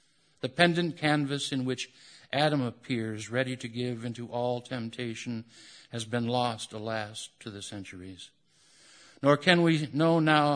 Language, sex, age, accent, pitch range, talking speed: English, male, 60-79, American, 115-145 Hz, 140 wpm